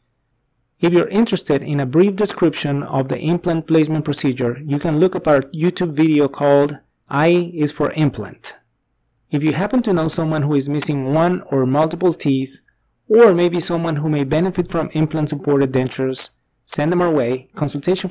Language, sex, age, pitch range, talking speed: English, male, 30-49, 135-165 Hz, 170 wpm